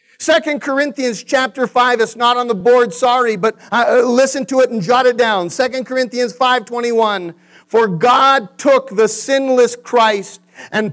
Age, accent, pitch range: 50-69, American, 180-260 Hz